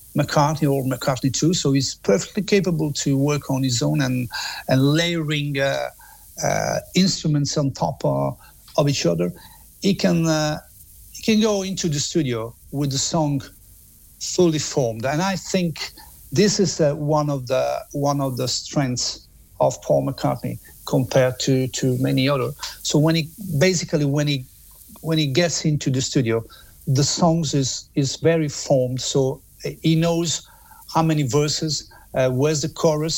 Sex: male